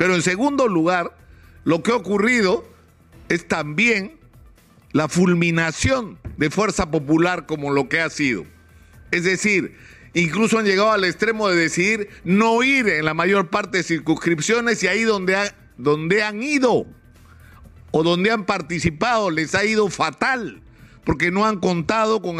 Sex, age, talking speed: male, 50-69, 150 wpm